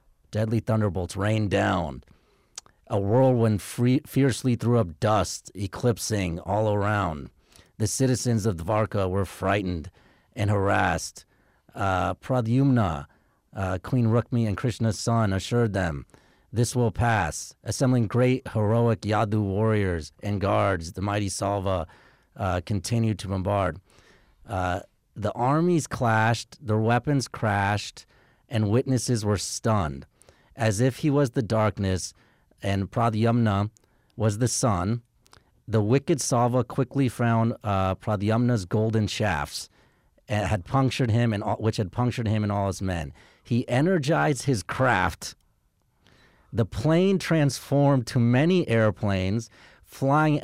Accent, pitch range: American, 100-125 Hz